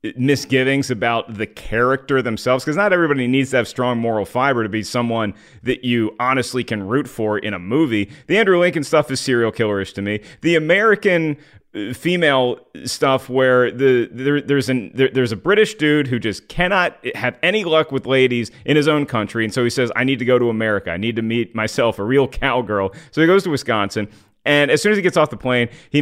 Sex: male